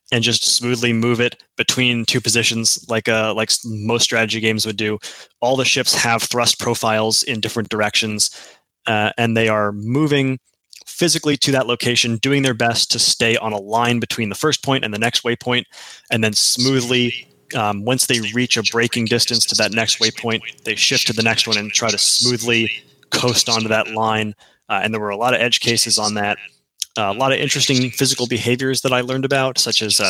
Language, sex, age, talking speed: English, male, 20-39, 205 wpm